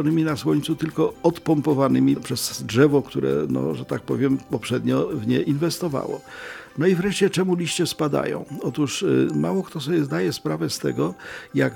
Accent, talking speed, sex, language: native, 150 wpm, male, Polish